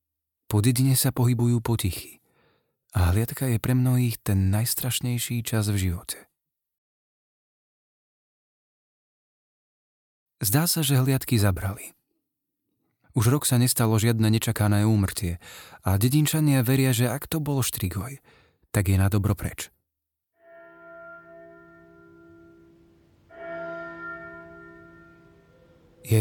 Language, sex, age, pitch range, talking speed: Slovak, male, 30-49, 100-135 Hz, 90 wpm